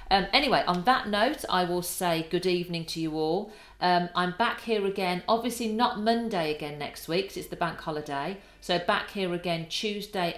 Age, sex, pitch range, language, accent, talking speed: 50-69, female, 165-210 Hz, English, British, 195 wpm